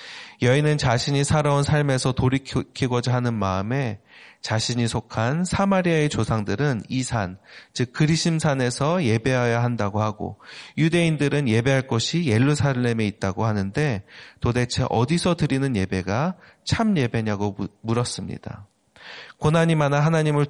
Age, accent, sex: 30-49, native, male